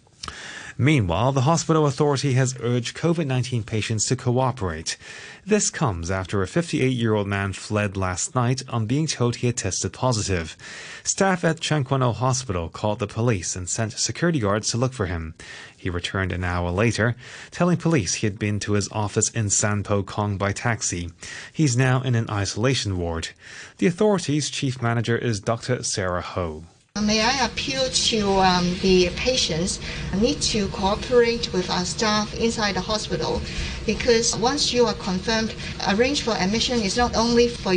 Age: 20-39